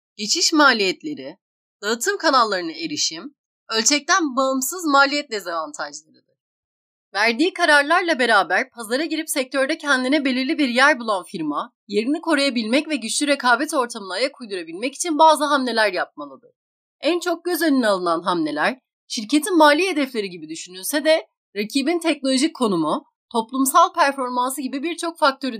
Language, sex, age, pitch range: Turkish, female, 30-49, 235-315 Hz